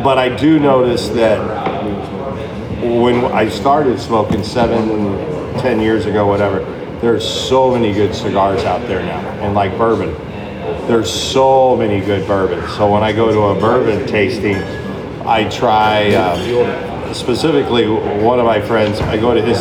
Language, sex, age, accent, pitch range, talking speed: English, male, 40-59, American, 105-120 Hz, 150 wpm